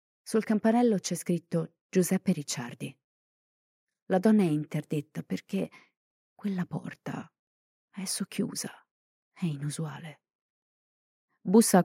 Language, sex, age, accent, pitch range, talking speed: Italian, female, 30-49, native, 135-190 Hz, 95 wpm